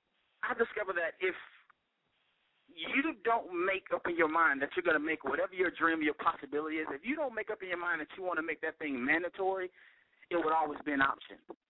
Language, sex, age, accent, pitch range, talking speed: English, male, 30-49, American, 170-275 Hz, 225 wpm